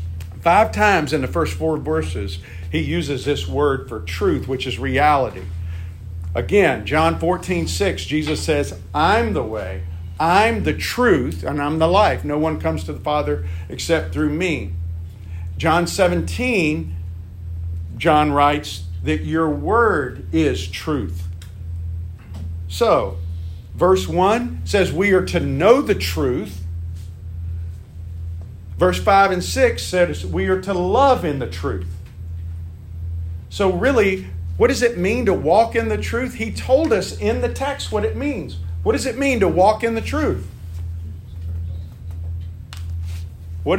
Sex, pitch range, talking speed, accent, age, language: male, 85-95 Hz, 140 wpm, American, 50-69, English